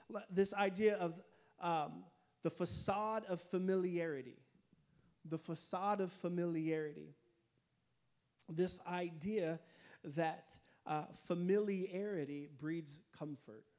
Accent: American